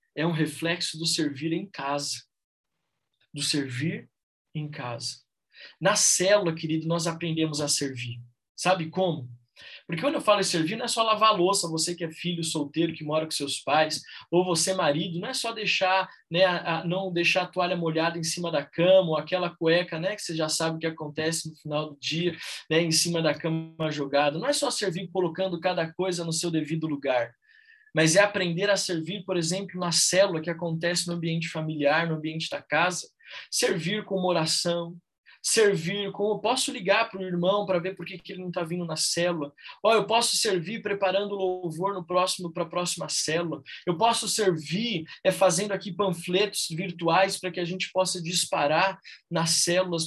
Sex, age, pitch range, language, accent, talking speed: male, 20-39, 160-190 Hz, Portuguese, Brazilian, 190 wpm